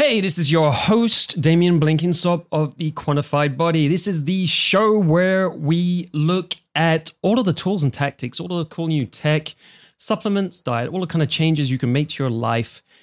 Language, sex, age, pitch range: English, male, 30-49, 130-170 Hz